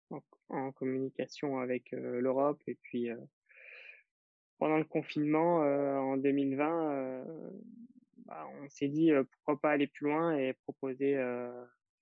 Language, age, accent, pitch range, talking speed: French, 20-39, French, 125-140 Hz, 140 wpm